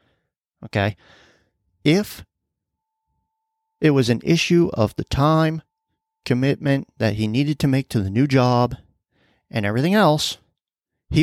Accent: American